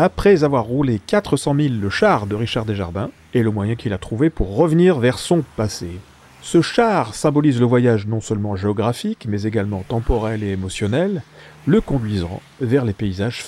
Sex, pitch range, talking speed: male, 100-135 Hz, 175 wpm